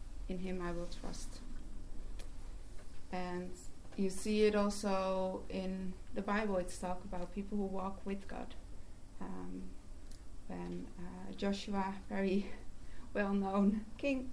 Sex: female